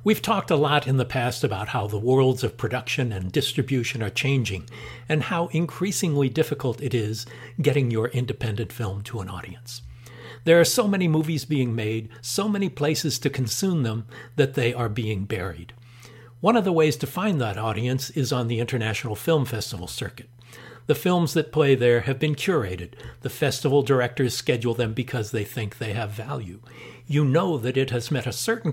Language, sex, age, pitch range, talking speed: English, male, 60-79, 115-145 Hz, 190 wpm